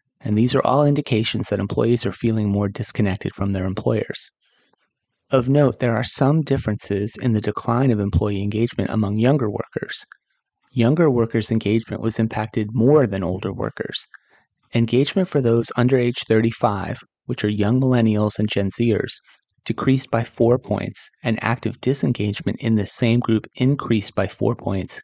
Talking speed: 160 wpm